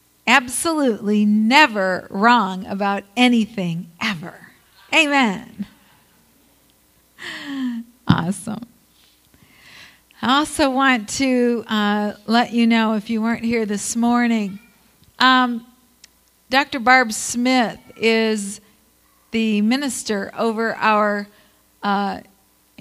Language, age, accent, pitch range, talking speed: English, 50-69, American, 205-240 Hz, 85 wpm